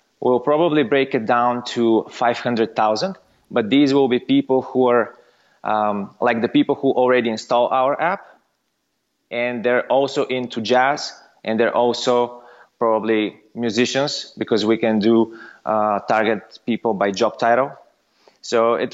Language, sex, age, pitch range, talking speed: English, male, 20-39, 115-135 Hz, 145 wpm